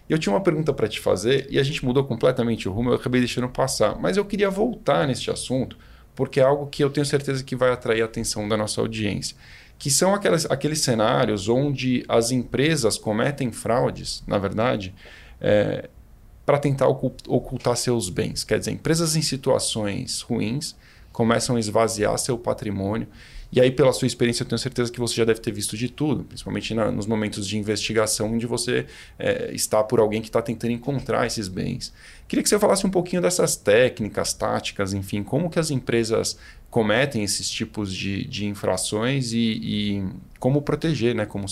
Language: Portuguese